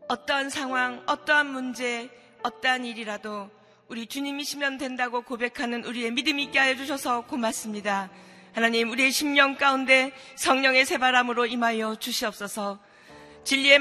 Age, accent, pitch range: 40-59, native, 240-285 Hz